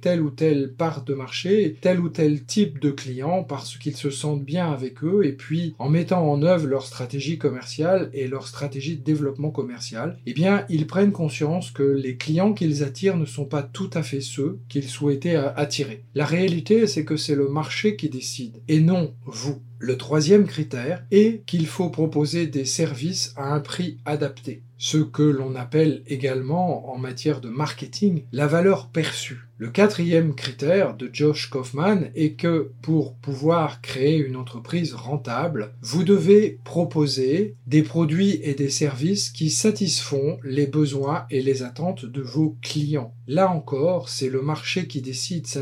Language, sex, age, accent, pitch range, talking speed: French, male, 40-59, French, 135-165 Hz, 170 wpm